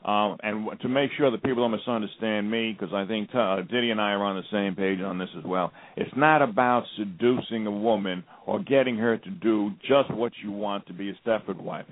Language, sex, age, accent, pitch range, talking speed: English, male, 50-69, American, 110-140 Hz, 230 wpm